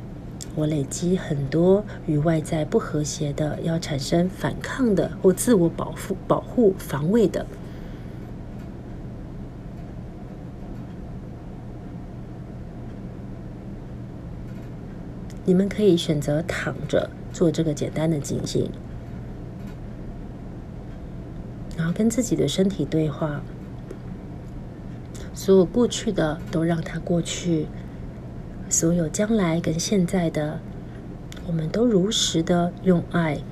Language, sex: Chinese, female